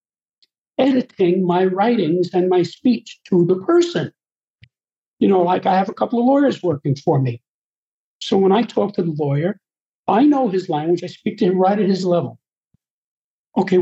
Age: 60-79